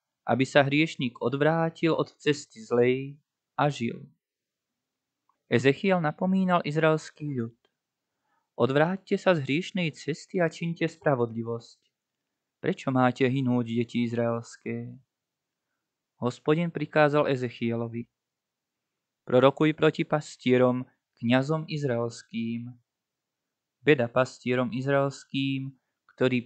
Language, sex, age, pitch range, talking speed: Slovak, male, 20-39, 125-150 Hz, 85 wpm